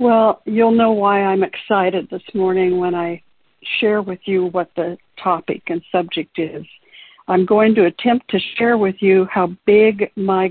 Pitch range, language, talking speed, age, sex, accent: 175-215 Hz, English, 170 wpm, 60-79, female, American